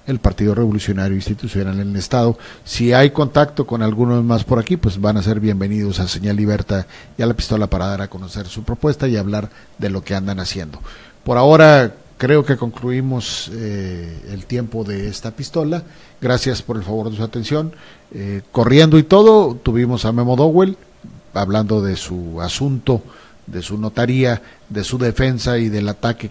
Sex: male